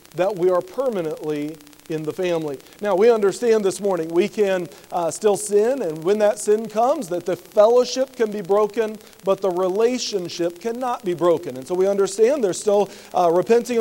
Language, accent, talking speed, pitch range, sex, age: English, American, 185 wpm, 170-225 Hz, male, 40-59